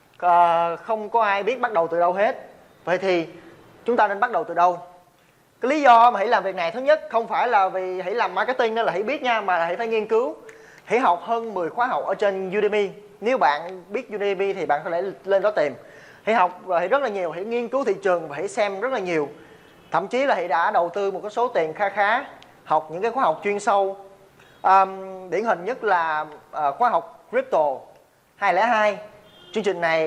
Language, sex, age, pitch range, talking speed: Vietnamese, male, 20-39, 170-225 Hz, 235 wpm